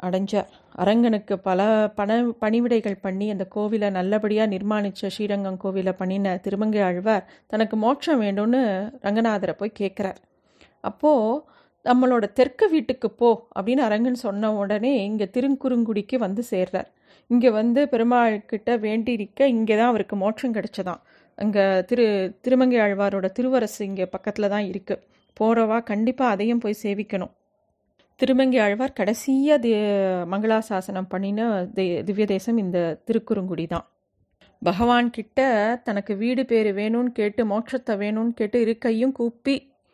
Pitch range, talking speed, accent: 200-240 Hz, 115 wpm, native